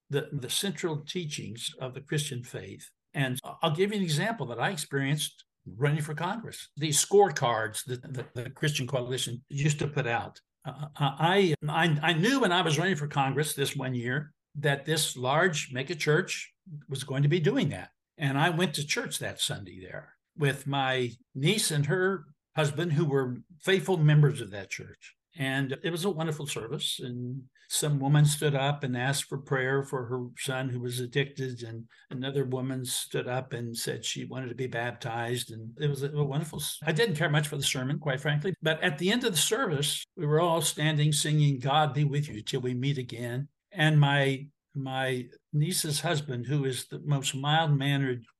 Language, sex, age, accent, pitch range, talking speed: English, male, 60-79, American, 130-155 Hz, 190 wpm